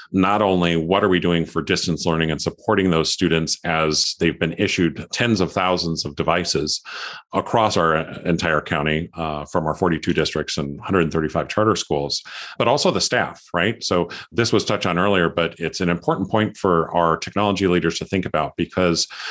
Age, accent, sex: 40-59, American, male